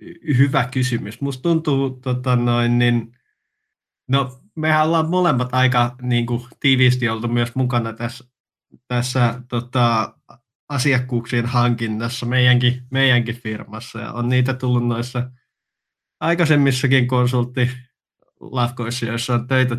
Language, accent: Finnish, native